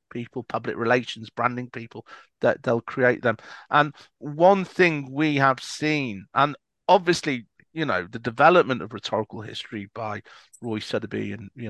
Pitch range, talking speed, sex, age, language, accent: 125-175 Hz, 150 wpm, male, 40-59, English, British